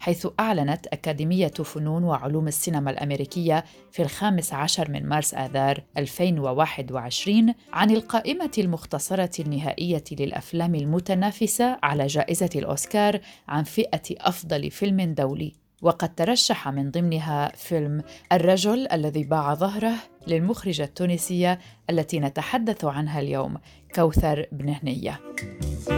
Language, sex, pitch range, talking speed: Arabic, female, 145-190 Hz, 105 wpm